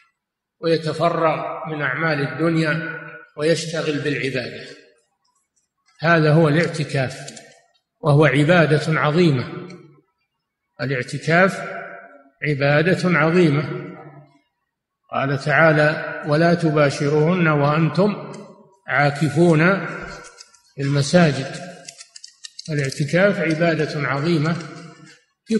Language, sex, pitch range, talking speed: Arabic, male, 150-185 Hz, 60 wpm